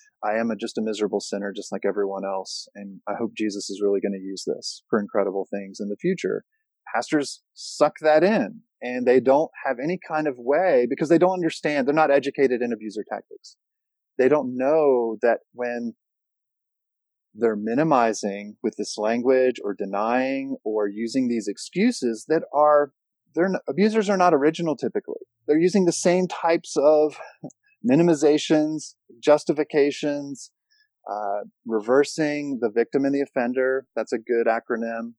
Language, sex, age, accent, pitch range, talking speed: English, male, 30-49, American, 115-160 Hz, 160 wpm